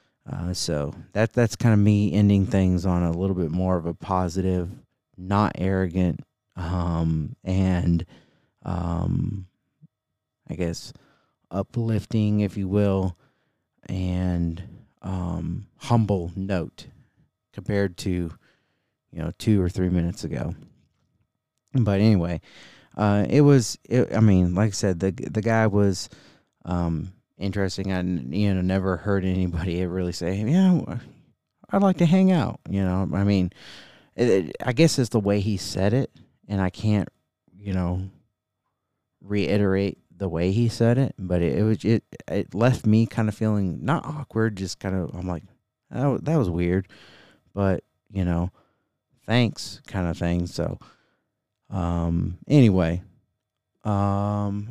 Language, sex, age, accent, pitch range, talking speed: English, male, 30-49, American, 90-110 Hz, 140 wpm